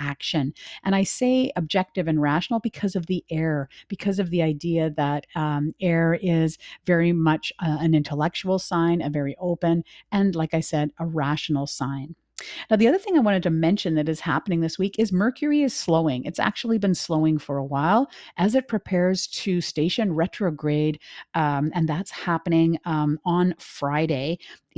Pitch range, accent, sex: 155-195 Hz, American, female